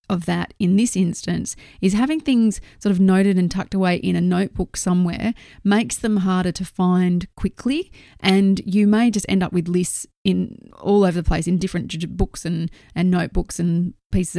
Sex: female